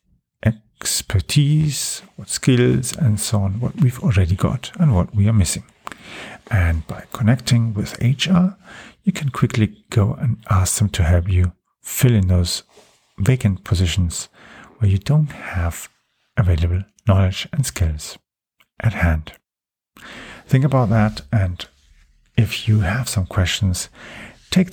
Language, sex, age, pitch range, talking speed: English, male, 50-69, 95-120 Hz, 135 wpm